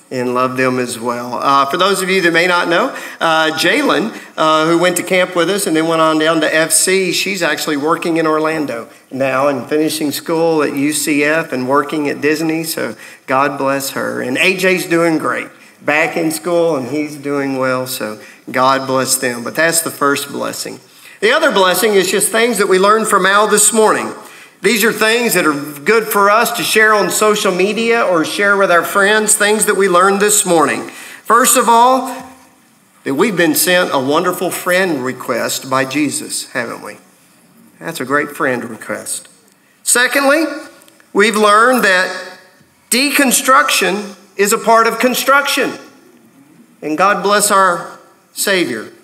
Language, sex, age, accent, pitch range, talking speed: English, male, 50-69, American, 150-210 Hz, 170 wpm